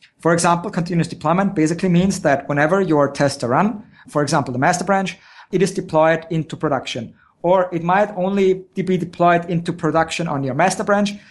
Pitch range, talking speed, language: 160-190 Hz, 180 wpm, English